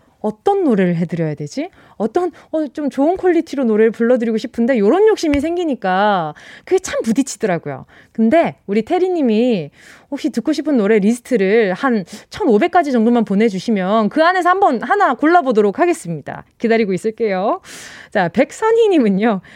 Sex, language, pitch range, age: female, Korean, 210-315 Hz, 20-39